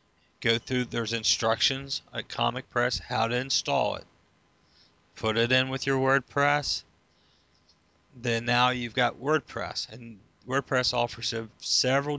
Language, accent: English, American